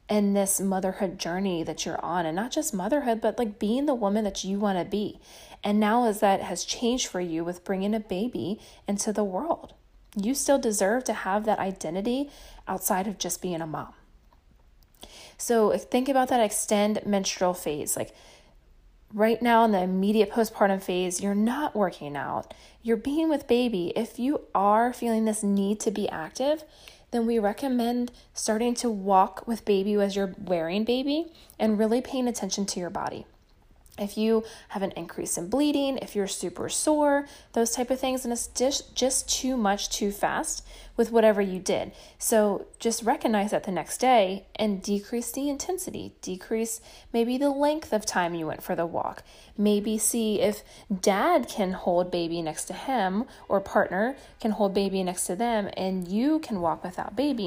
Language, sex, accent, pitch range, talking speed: English, female, American, 195-240 Hz, 180 wpm